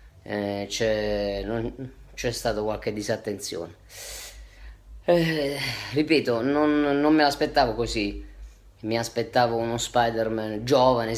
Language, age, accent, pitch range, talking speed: Italian, 20-39, native, 105-120 Hz, 85 wpm